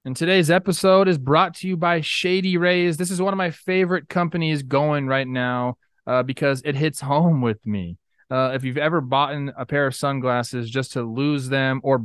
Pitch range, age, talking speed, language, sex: 130-165 Hz, 20-39, 205 wpm, English, male